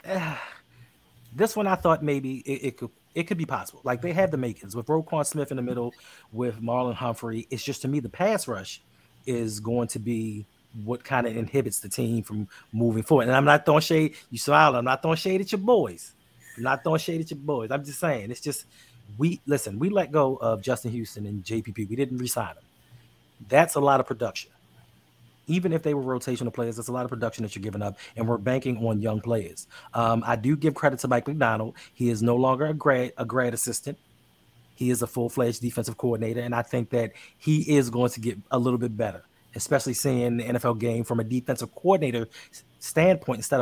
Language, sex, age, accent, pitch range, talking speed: English, male, 30-49, American, 115-140 Hz, 220 wpm